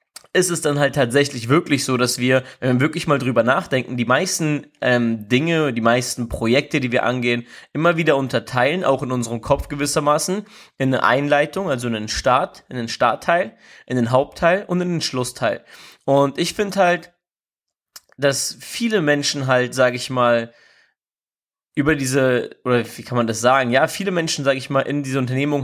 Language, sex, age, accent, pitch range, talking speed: German, male, 20-39, German, 125-145 Hz, 185 wpm